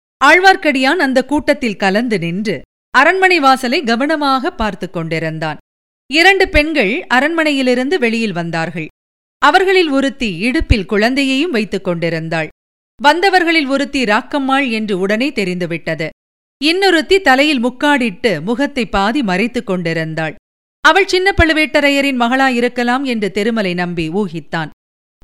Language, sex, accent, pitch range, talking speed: Tamil, female, native, 200-290 Hz, 100 wpm